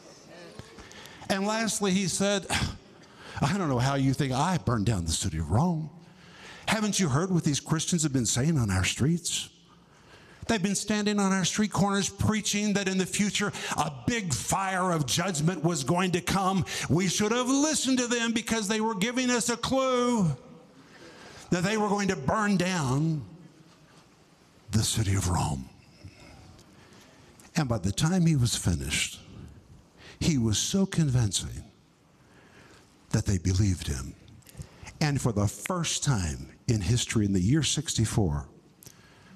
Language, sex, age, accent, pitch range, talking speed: English, male, 50-69, American, 115-185 Hz, 150 wpm